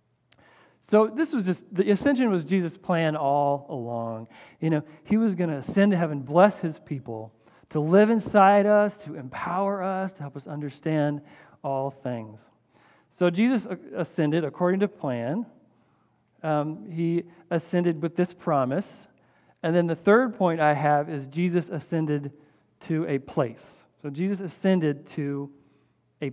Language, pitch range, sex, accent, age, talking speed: English, 145-185 Hz, male, American, 40-59, 150 wpm